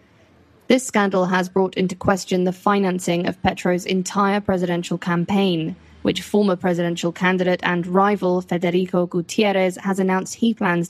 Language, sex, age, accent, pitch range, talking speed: English, female, 20-39, British, 175-195 Hz, 140 wpm